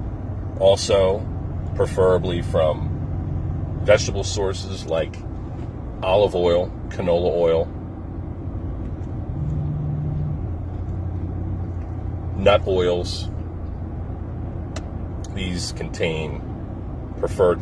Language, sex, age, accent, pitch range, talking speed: English, male, 40-59, American, 90-105 Hz, 50 wpm